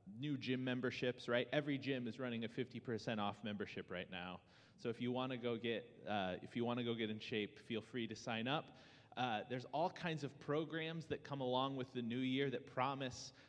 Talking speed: 225 wpm